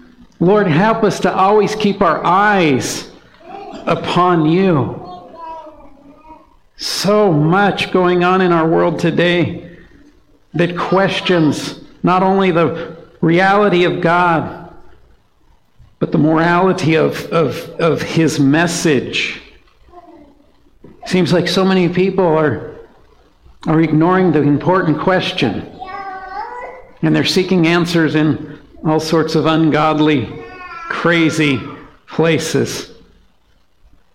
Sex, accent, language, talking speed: male, American, English, 100 wpm